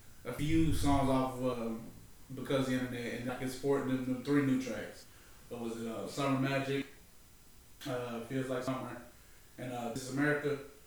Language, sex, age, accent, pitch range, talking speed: English, male, 20-39, American, 125-145 Hz, 160 wpm